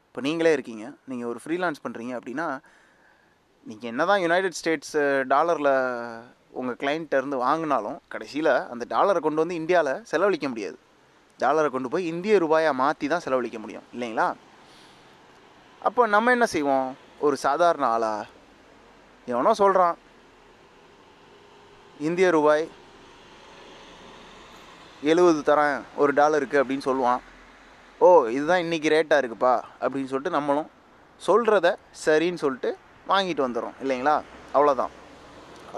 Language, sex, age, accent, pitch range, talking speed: Tamil, male, 20-39, native, 130-180 Hz, 110 wpm